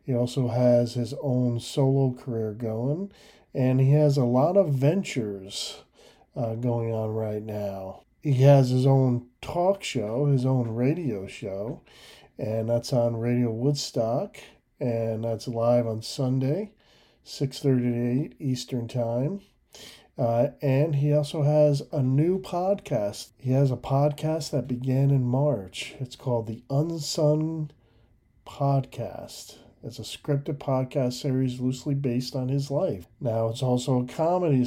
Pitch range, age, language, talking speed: 120-145 Hz, 40-59, English, 135 wpm